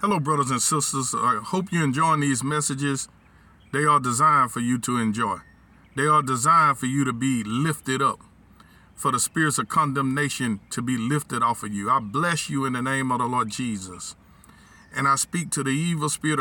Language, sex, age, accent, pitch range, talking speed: English, male, 40-59, American, 120-155 Hz, 200 wpm